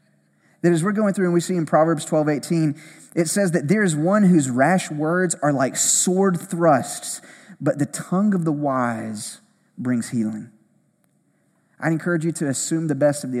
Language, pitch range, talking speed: English, 140-175 Hz, 190 wpm